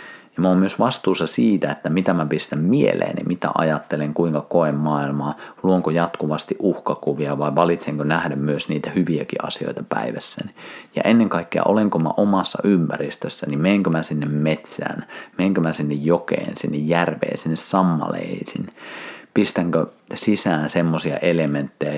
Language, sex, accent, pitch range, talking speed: Finnish, male, native, 75-85 Hz, 140 wpm